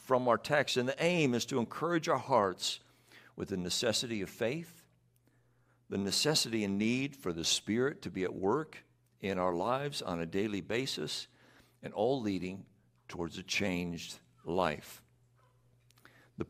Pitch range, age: 100-130 Hz, 60-79